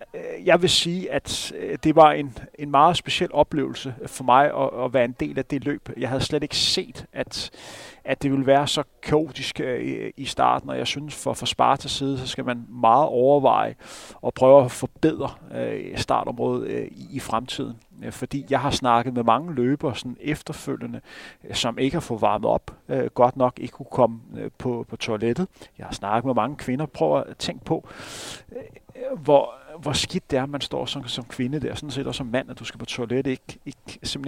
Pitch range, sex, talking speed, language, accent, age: 125-145 Hz, male, 210 wpm, Danish, native, 30-49